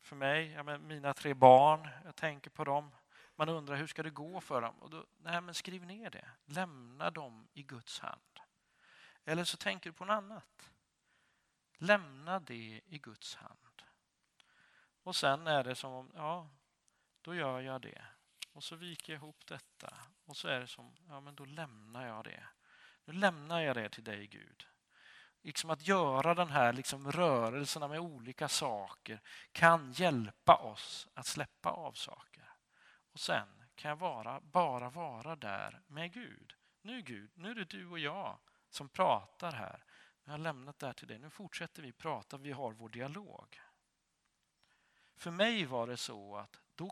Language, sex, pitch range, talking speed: Swedish, male, 130-170 Hz, 180 wpm